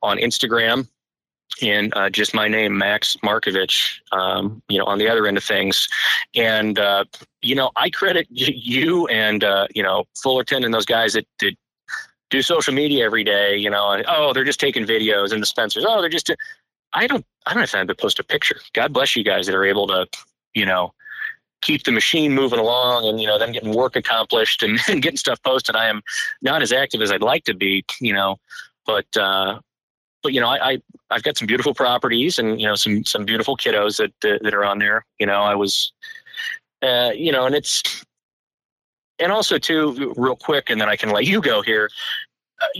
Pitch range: 105-130 Hz